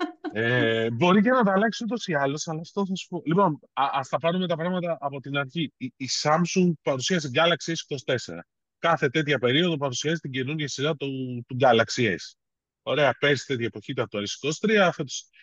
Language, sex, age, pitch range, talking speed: Greek, male, 30-49, 125-165 Hz, 180 wpm